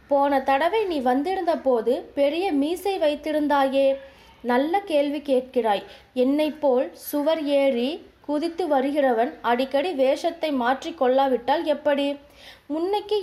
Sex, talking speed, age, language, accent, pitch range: female, 105 wpm, 20-39, Tamil, native, 260-315 Hz